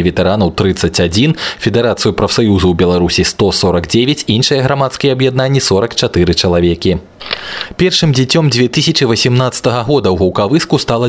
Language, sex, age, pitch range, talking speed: Russian, male, 20-39, 95-130 Hz, 115 wpm